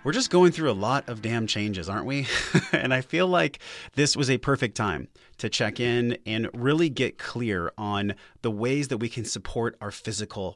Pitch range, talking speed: 100-130 Hz, 205 wpm